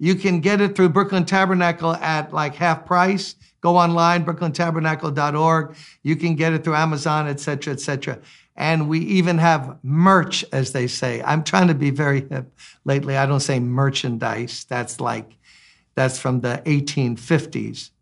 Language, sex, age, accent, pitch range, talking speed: English, male, 60-79, American, 135-170 Hz, 165 wpm